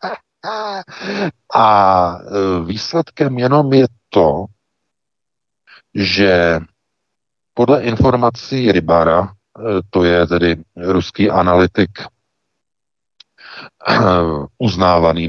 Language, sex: Czech, male